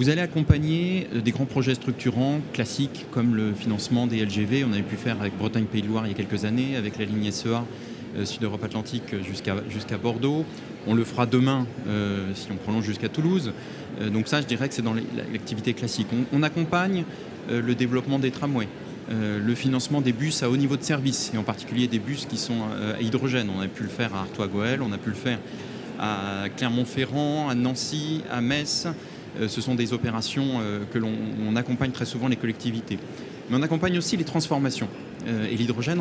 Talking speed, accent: 200 wpm, French